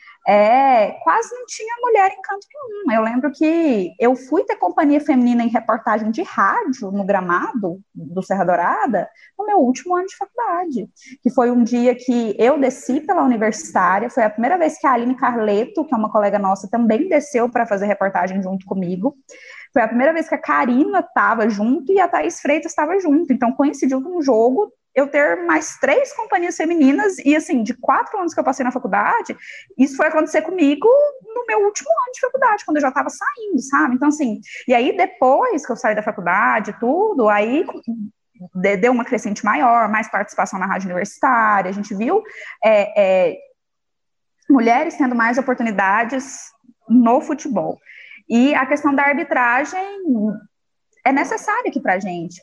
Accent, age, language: Brazilian, 20-39, Portuguese